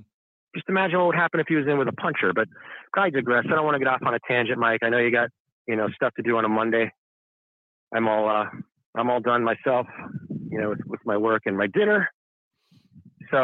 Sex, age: male, 40-59